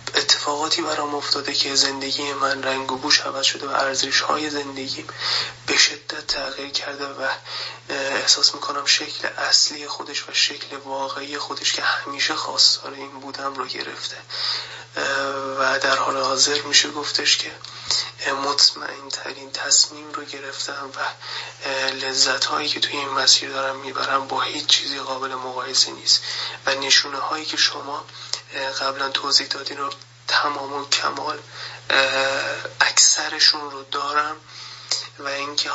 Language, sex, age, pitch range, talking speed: Persian, male, 20-39, 135-145 Hz, 130 wpm